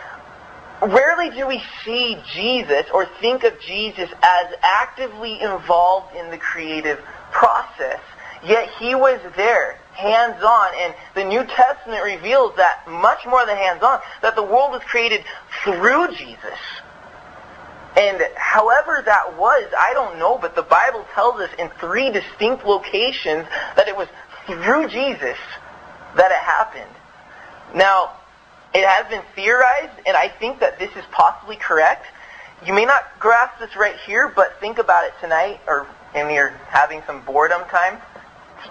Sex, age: male, 20-39